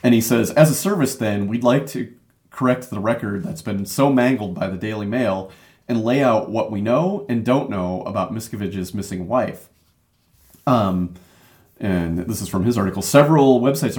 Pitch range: 100-130 Hz